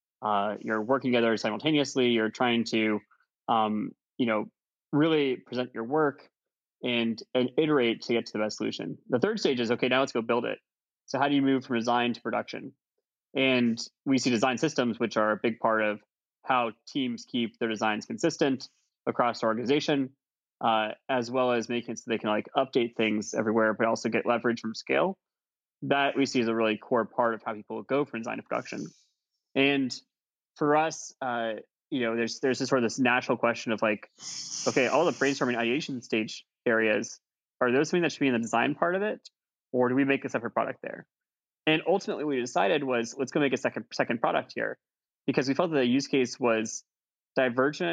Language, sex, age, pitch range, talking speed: English, male, 20-39, 115-135 Hz, 205 wpm